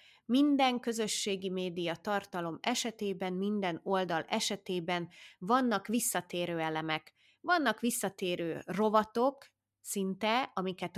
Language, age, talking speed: Hungarian, 20-39, 85 wpm